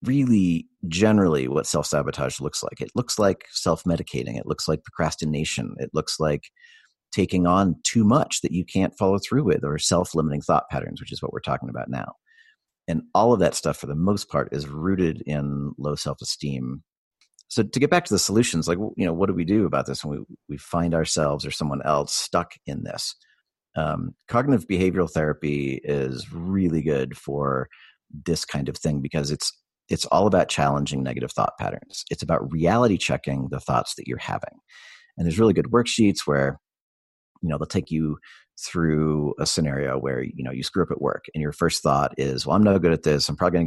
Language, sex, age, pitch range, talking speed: English, male, 40-59, 70-90 Hz, 205 wpm